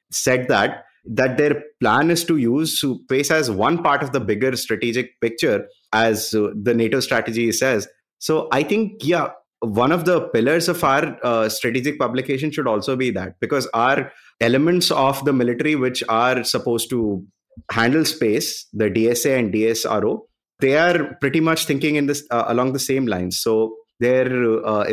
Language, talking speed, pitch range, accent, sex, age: English, 170 wpm, 115-145 Hz, Indian, male, 30-49